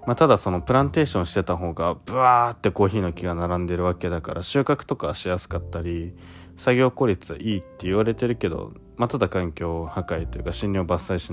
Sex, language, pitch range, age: male, Japanese, 85-105 Hz, 20-39